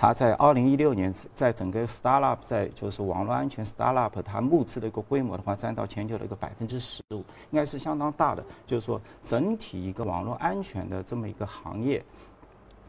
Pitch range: 100-130 Hz